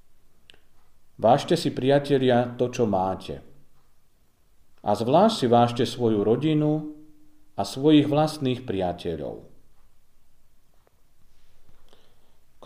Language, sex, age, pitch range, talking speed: Slovak, male, 40-59, 115-155 Hz, 80 wpm